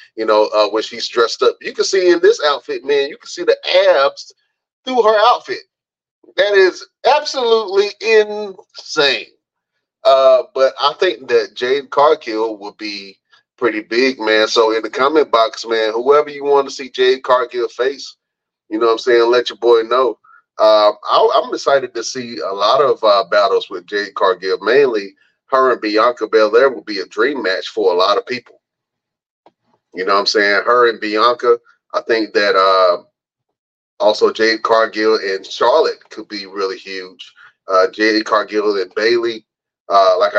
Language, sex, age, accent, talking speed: English, male, 30-49, American, 175 wpm